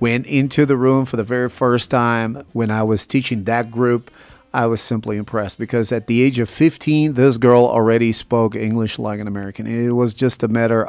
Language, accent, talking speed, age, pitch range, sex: English, American, 210 wpm, 40-59, 110-125 Hz, male